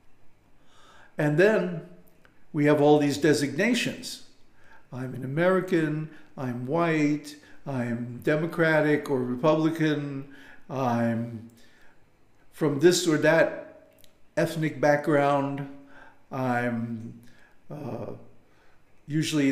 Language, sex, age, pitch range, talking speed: English, male, 60-79, 135-170 Hz, 80 wpm